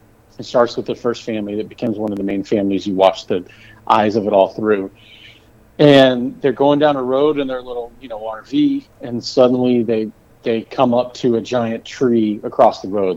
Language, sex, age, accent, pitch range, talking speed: English, male, 40-59, American, 105-125 Hz, 210 wpm